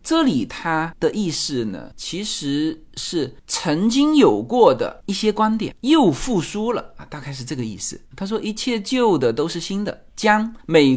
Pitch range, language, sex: 145-240 Hz, Chinese, male